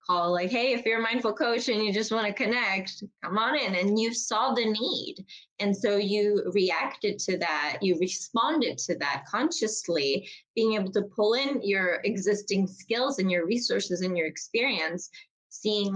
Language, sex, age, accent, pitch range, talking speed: English, female, 20-39, American, 175-220 Hz, 175 wpm